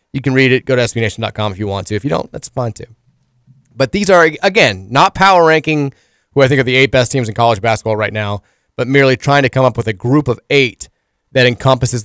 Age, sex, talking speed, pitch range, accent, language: 20-39, male, 250 wpm, 110-135 Hz, American, English